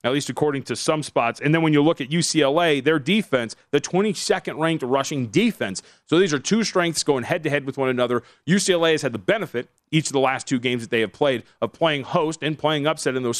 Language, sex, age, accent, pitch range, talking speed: English, male, 30-49, American, 125-155 Hz, 245 wpm